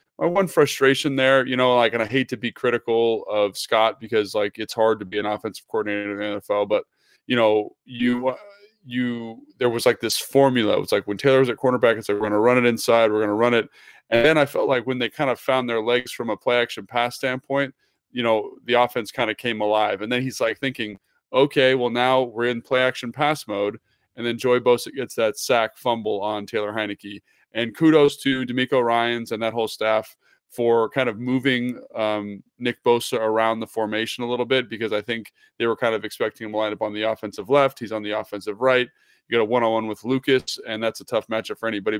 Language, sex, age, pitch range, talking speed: English, male, 20-39, 110-130 Hz, 235 wpm